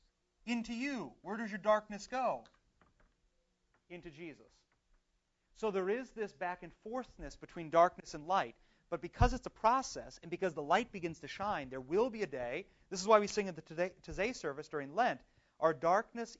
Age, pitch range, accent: 40-59, 135-195 Hz, American